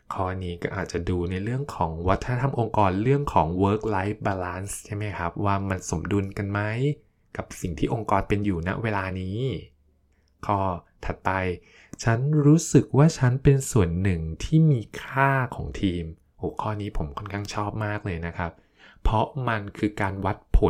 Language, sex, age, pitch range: Thai, male, 20-39, 90-115 Hz